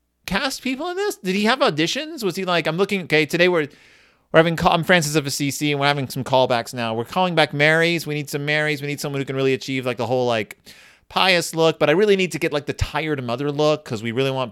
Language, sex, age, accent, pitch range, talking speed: English, male, 30-49, American, 125-175 Hz, 265 wpm